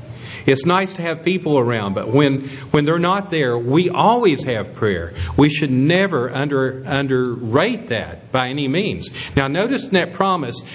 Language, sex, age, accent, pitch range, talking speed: English, male, 50-69, American, 115-165 Hz, 170 wpm